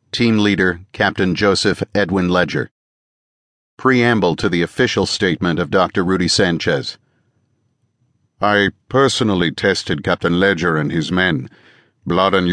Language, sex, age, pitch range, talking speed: English, male, 50-69, 95-110 Hz, 120 wpm